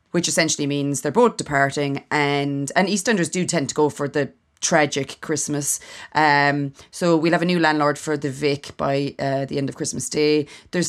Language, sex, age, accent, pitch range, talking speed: English, female, 20-39, Irish, 145-185 Hz, 195 wpm